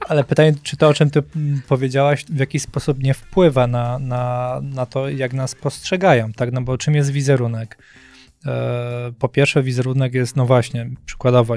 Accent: native